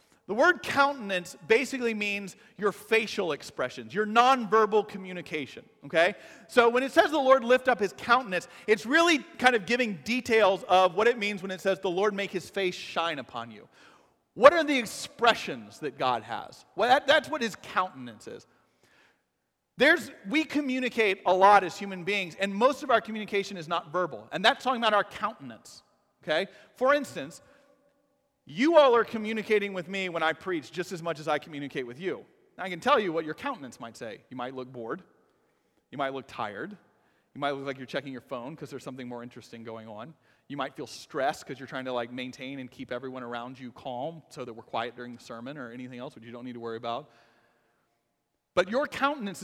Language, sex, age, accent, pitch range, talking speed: English, male, 40-59, American, 140-235 Hz, 205 wpm